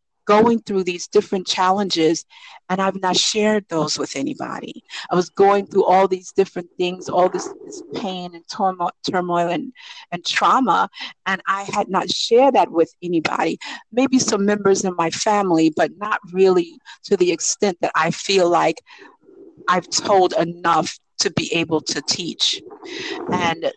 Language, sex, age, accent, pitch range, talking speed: English, female, 50-69, American, 170-220 Hz, 160 wpm